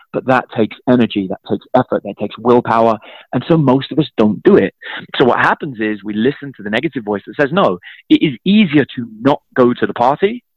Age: 30-49